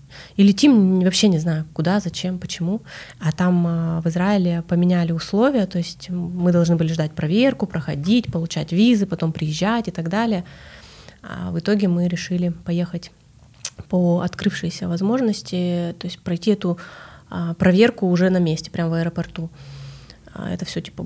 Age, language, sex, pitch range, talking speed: 20-39, Russian, female, 170-205 Hz, 145 wpm